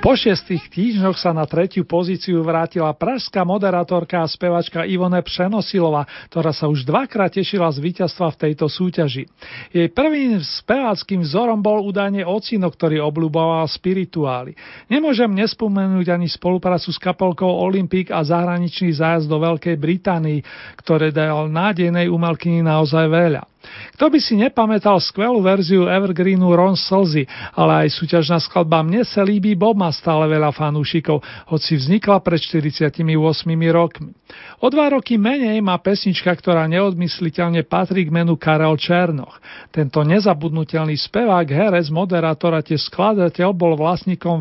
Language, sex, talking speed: Slovak, male, 135 wpm